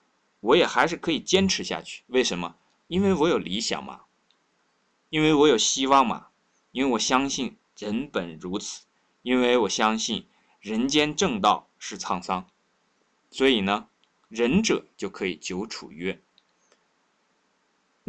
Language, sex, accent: Chinese, male, native